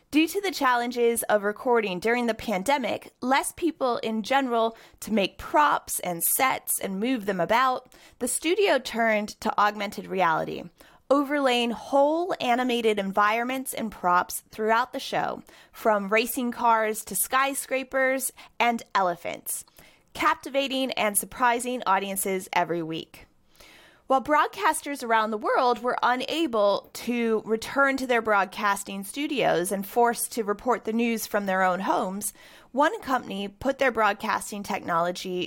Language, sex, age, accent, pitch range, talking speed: English, female, 20-39, American, 210-265 Hz, 135 wpm